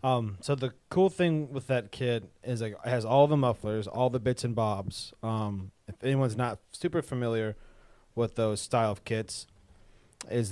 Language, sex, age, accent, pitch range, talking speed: English, male, 30-49, American, 105-125 Hz, 175 wpm